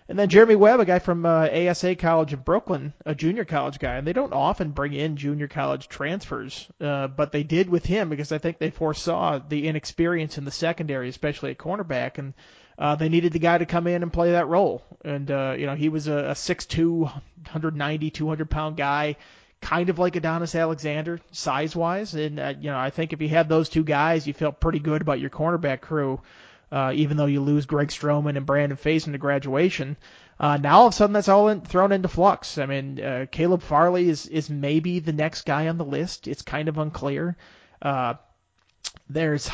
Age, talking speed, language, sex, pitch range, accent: 30-49, 210 wpm, English, male, 145-170 Hz, American